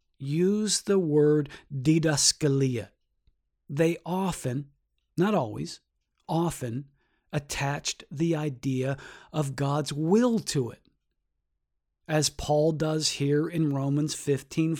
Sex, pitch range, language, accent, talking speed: male, 140-190 Hz, English, American, 95 wpm